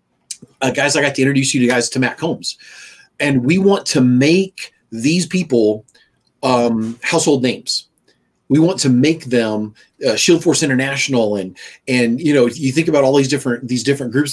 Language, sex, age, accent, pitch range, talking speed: English, male, 40-59, American, 120-145 Hz, 185 wpm